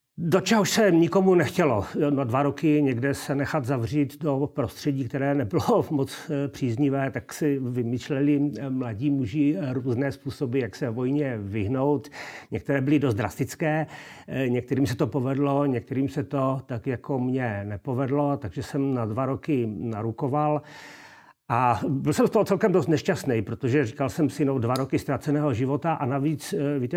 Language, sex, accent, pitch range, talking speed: Czech, male, native, 125-145 Hz, 155 wpm